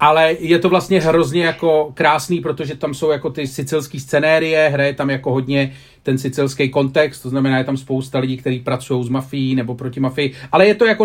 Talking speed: 205 wpm